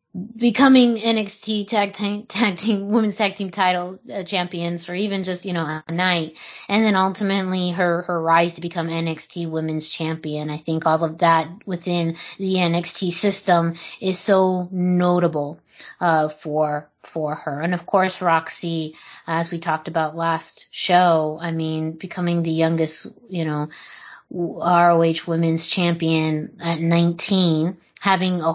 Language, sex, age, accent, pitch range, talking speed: English, female, 20-39, American, 165-190 Hz, 145 wpm